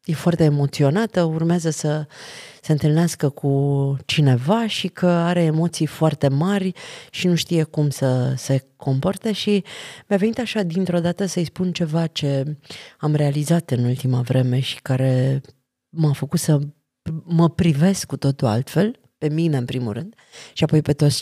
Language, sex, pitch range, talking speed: Romanian, female, 150-205 Hz, 160 wpm